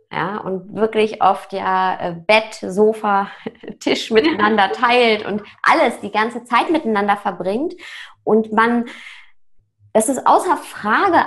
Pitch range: 190-245 Hz